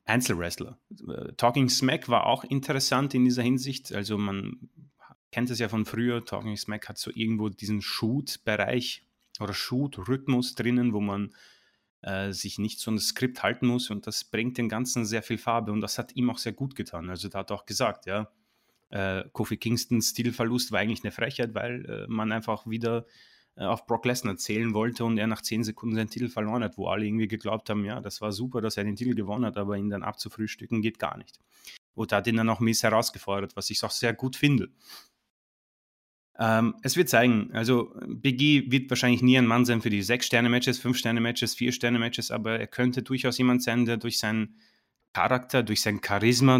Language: German